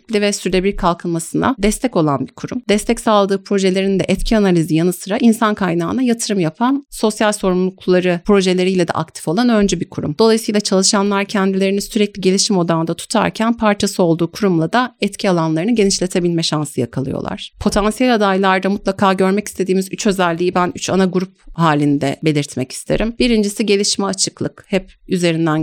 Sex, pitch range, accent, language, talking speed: female, 160-195 Hz, native, Turkish, 145 wpm